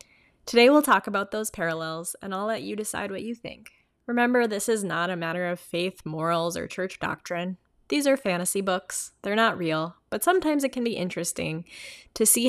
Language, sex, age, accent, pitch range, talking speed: English, female, 10-29, American, 170-225 Hz, 195 wpm